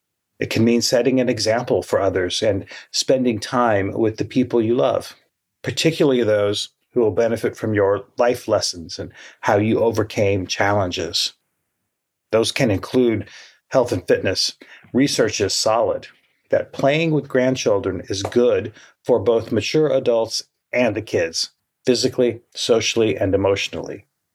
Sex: male